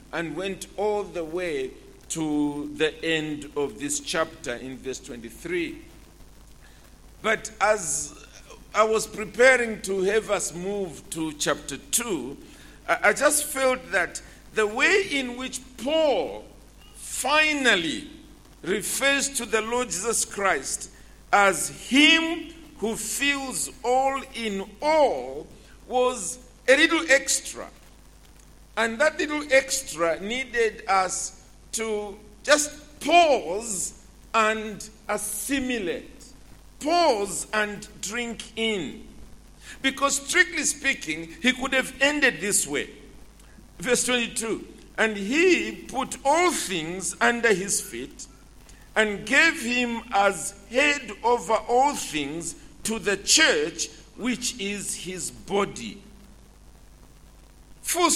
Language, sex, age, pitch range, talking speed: English, male, 50-69, 190-275 Hz, 105 wpm